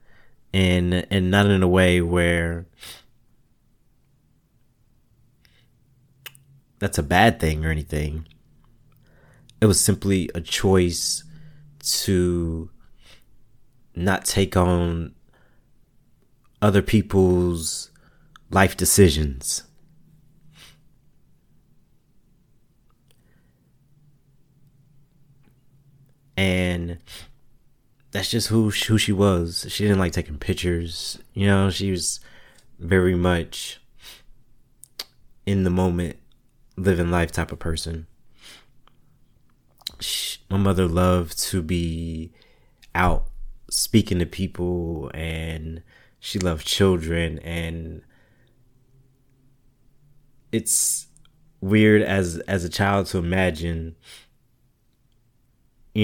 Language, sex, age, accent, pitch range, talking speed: English, male, 30-49, American, 85-125 Hz, 80 wpm